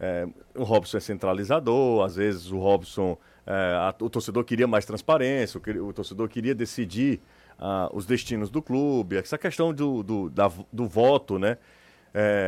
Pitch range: 105-150 Hz